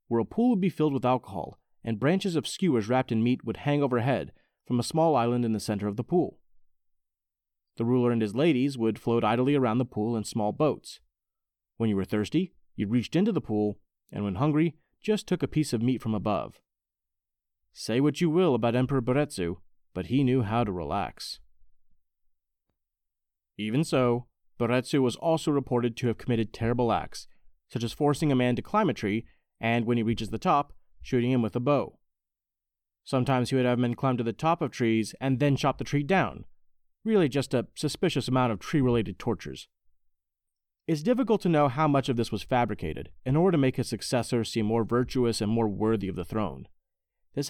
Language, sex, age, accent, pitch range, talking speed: English, male, 30-49, American, 105-140 Hz, 200 wpm